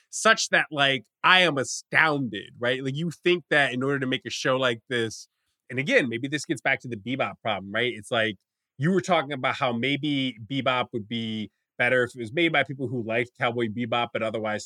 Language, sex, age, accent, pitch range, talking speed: English, male, 20-39, American, 115-150 Hz, 220 wpm